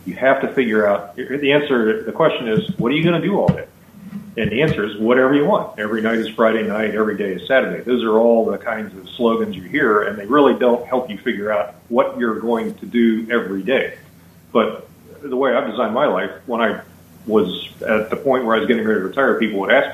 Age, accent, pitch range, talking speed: 40-59, American, 100-130 Hz, 245 wpm